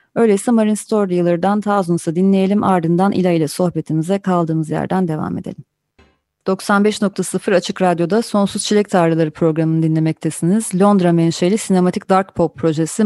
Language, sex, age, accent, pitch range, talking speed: Turkish, female, 30-49, native, 165-200 Hz, 125 wpm